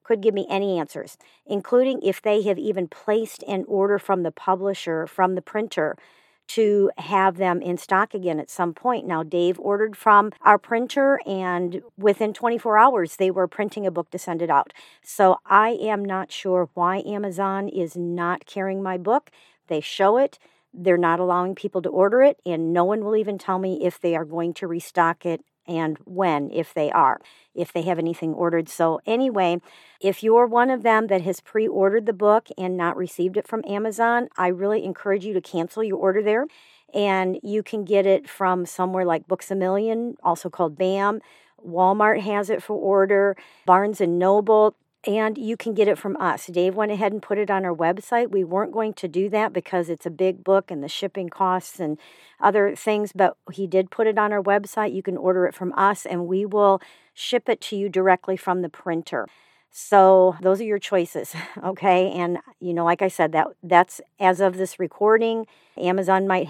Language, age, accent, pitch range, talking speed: English, 50-69, American, 175-210 Hz, 200 wpm